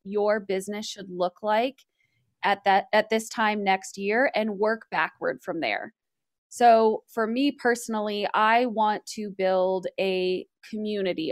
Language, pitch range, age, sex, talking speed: English, 195-230 Hz, 20-39, female, 145 wpm